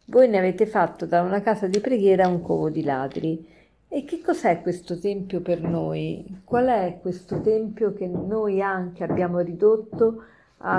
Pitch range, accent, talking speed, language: 175-220 Hz, native, 170 wpm, Italian